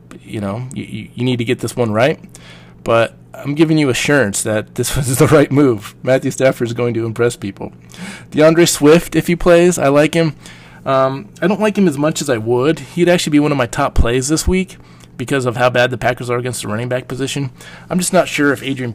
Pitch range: 100-130 Hz